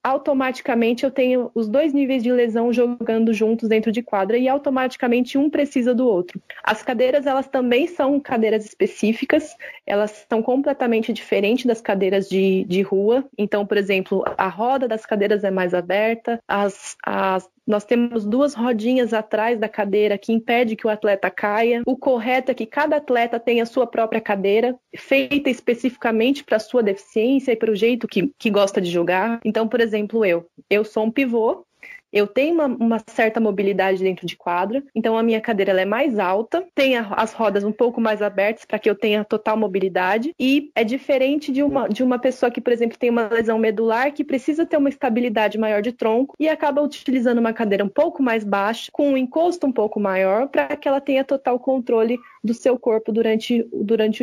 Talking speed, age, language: 190 wpm, 20-39, Portuguese